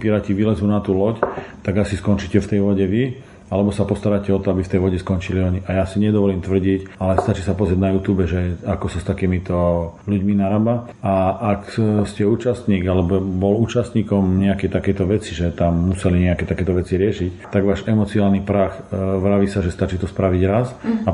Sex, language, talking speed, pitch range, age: male, Slovak, 200 wpm, 95-105 Hz, 40-59